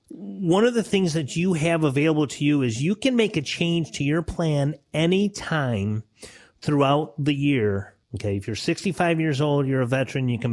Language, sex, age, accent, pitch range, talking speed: English, male, 30-49, American, 120-155 Hz, 200 wpm